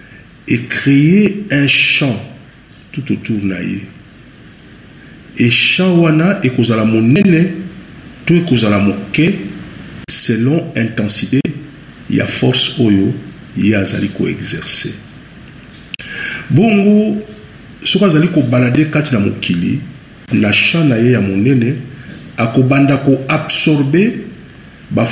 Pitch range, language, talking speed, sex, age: 110-160 Hz, English, 125 wpm, male, 50-69